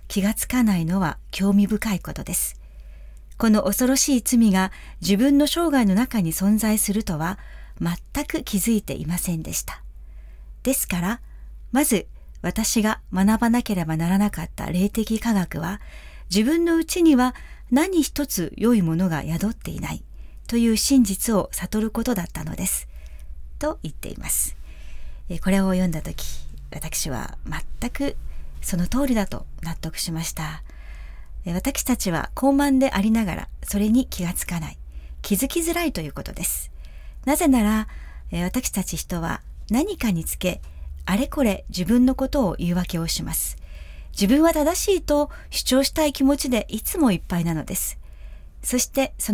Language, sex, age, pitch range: Japanese, female, 40-59, 165-245 Hz